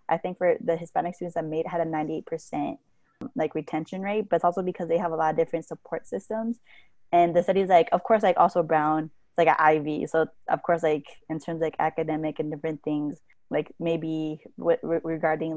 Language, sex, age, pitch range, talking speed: English, female, 20-39, 155-180 Hz, 205 wpm